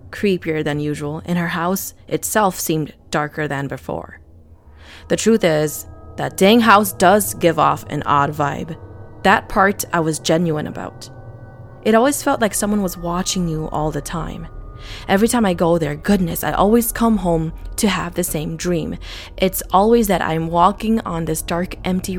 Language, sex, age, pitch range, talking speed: English, female, 20-39, 145-195 Hz, 175 wpm